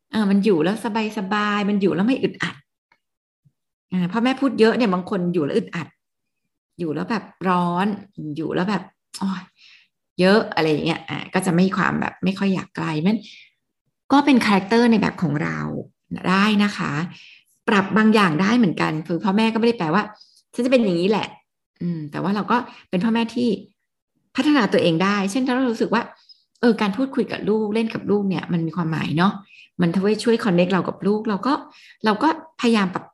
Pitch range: 175-220 Hz